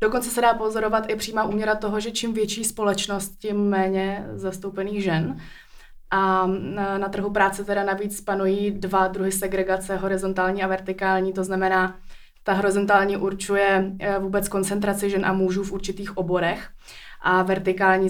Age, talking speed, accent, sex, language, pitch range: 20-39, 145 wpm, native, female, Czech, 195-215 Hz